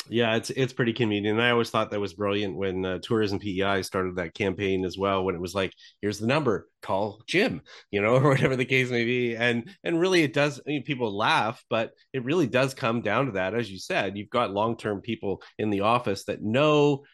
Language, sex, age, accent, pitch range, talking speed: English, male, 30-49, American, 100-125 Hz, 235 wpm